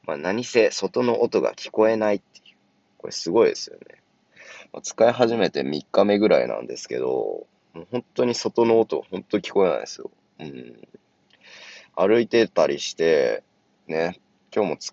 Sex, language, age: male, Japanese, 20-39